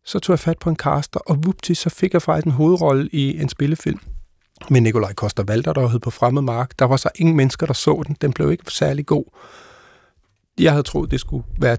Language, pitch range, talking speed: Danish, 130-160 Hz, 235 wpm